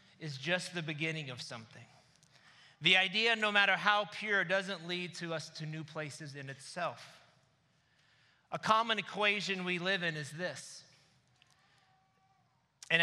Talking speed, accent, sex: 140 wpm, American, male